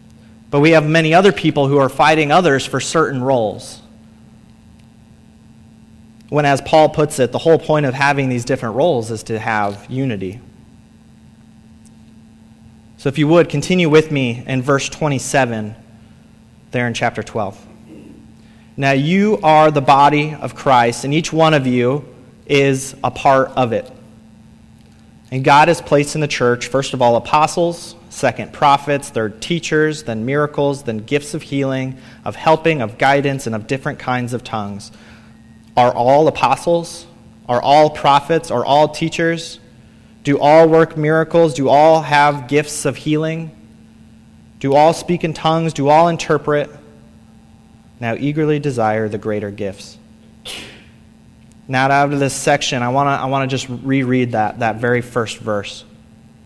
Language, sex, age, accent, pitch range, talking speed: English, male, 30-49, American, 110-150 Hz, 150 wpm